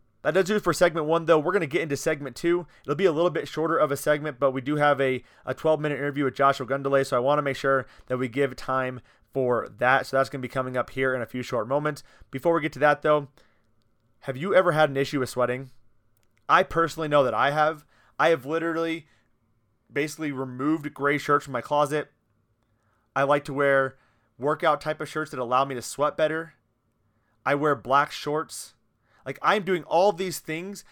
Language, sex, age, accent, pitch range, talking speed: English, male, 30-49, American, 125-160 Hz, 220 wpm